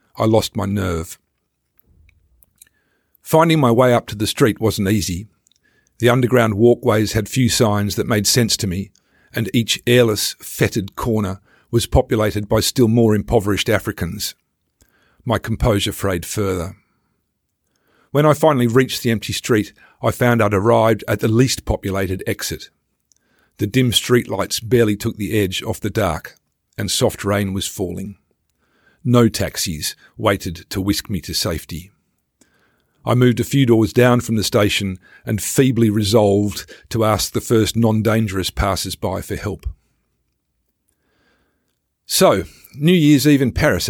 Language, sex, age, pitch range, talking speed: English, male, 50-69, 100-120 Hz, 145 wpm